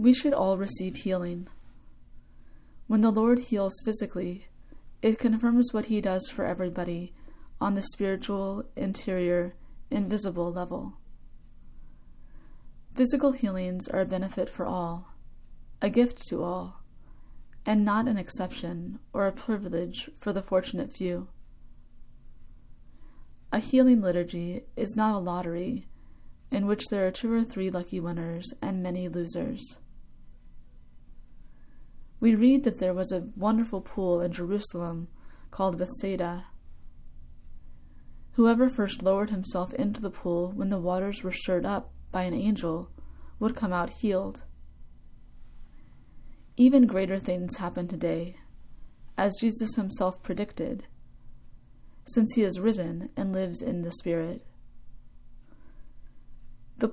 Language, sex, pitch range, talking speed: English, female, 170-215 Hz, 120 wpm